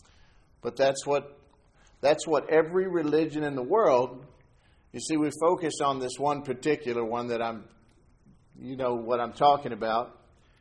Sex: male